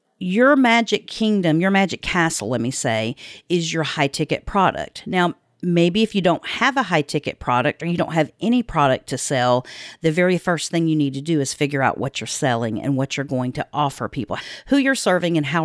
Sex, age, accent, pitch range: female, 40-59, American, 145-185 Hz